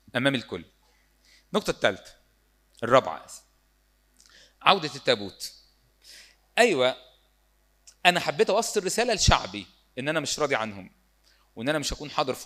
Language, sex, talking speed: Arabic, male, 115 wpm